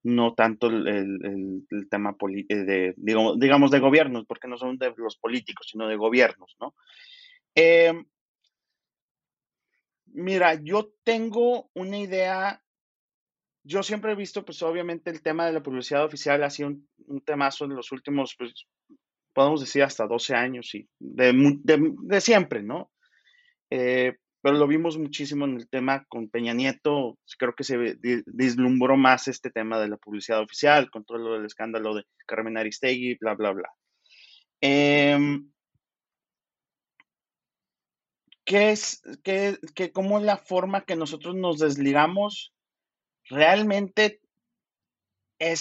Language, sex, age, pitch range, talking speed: Spanish, male, 30-49, 125-185 Hz, 140 wpm